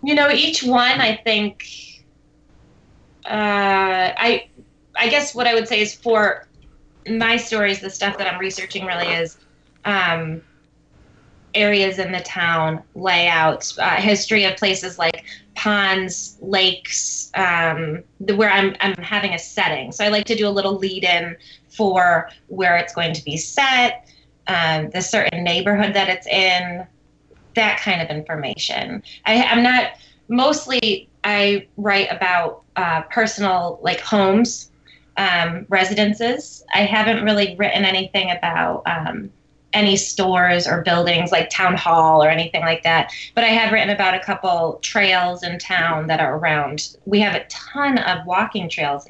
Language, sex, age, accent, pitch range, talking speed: English, female, 20-39, American, 170-210 Hz, 150 wpm